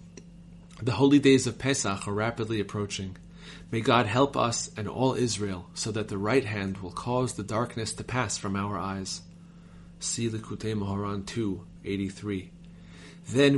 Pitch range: 100-130 Hz